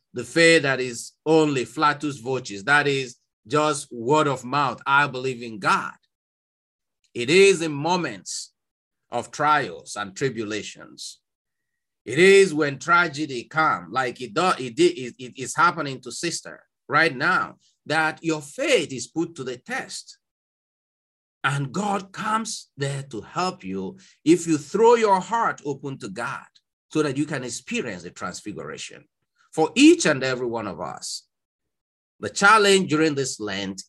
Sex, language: male, English